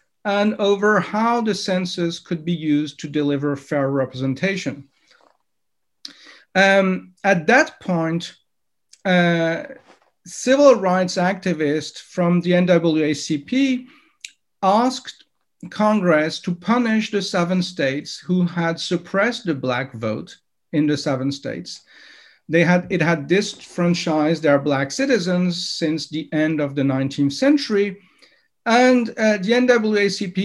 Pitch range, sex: 150-200 Hz, male